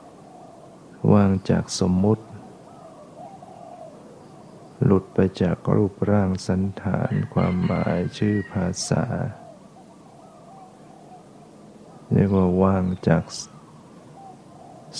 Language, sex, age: Thai, male, 60-79